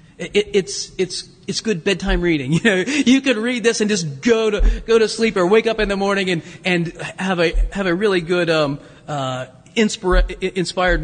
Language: English